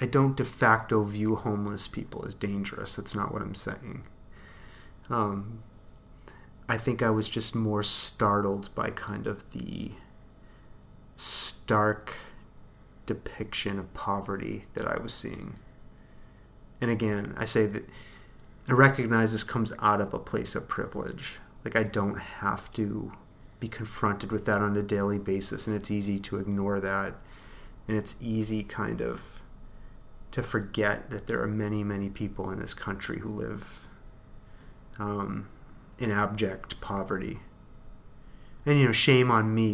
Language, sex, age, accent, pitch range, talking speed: English, male, 30-49, American, 105-115 Hz, 145 wpm